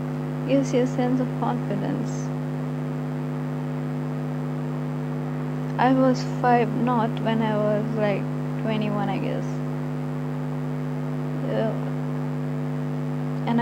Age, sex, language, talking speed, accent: 20-39, female, English, 80 wpm, Indian